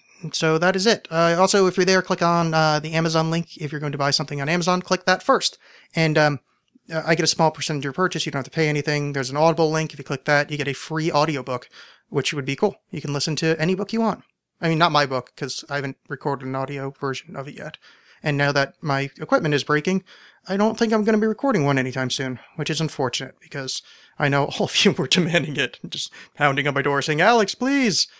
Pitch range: 140-175 Hz